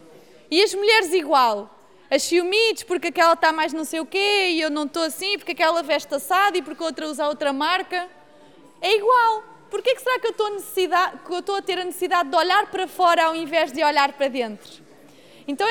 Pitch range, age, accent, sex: 305-385 Hz, 20-39, Brazilian, female